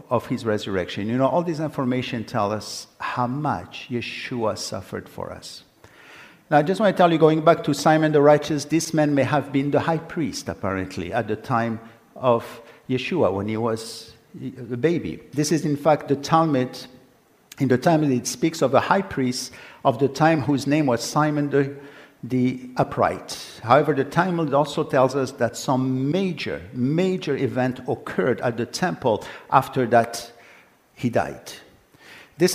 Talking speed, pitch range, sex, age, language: 170 wpm, 120-150 Hz, male, 50-69, English